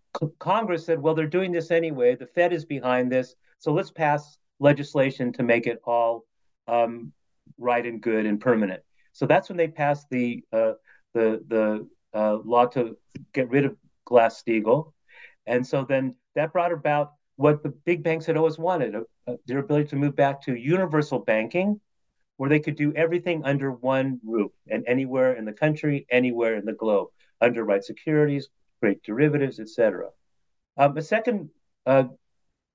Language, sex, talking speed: English, male, 170 wpm